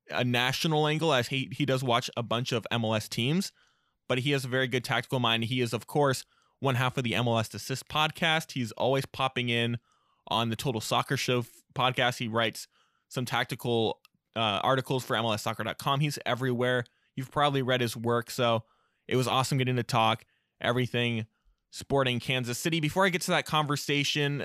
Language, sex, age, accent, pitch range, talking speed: English, male, 20-39, American, 115-135 Hz, 180 wpm